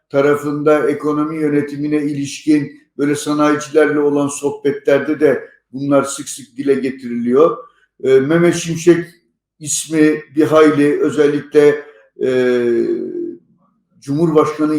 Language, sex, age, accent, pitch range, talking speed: Turkish, male, 60-79, native, 120-155 Hz, 85 wpm